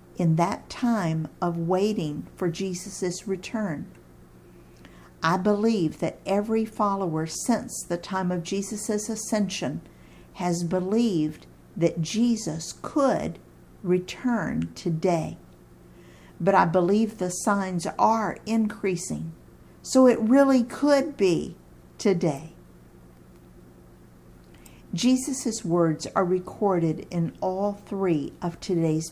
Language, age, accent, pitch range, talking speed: English, 50-69, American, 135-205 Hz, 100 wpm